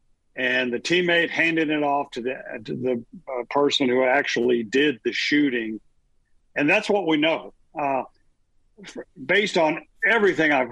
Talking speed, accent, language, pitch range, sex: 155 wpm, American, English, 125-160 Hz, male